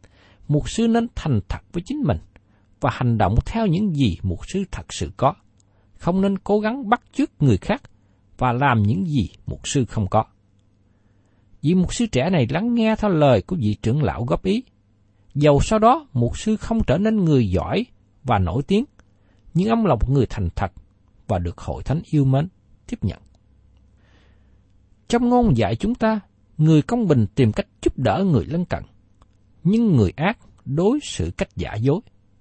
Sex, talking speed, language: male, 185 wpm, Vietnamese